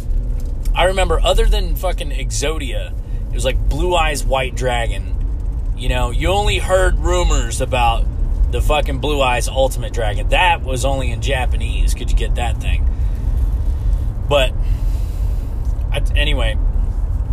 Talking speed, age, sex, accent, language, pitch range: 130 wpm, 30-49, male, American, English, 80-115 Hz